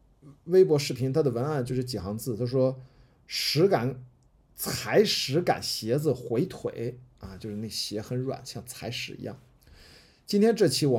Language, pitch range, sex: Chinese, 120-140 Hz, male